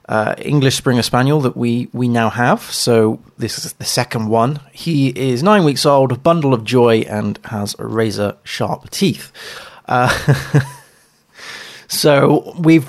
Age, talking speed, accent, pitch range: 20-39, 150 wpm, British, 110-130 Hz